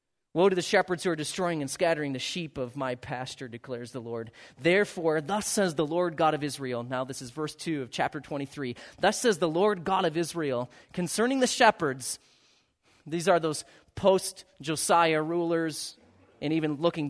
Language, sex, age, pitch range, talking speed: English, male, 30-49, 135-190 Hz, 180 wpm